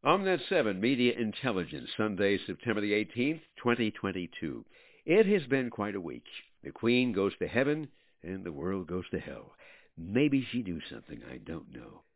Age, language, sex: 60-79, English, male